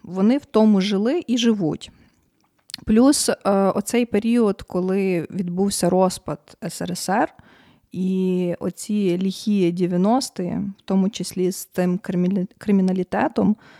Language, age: Ukrainian, 20-39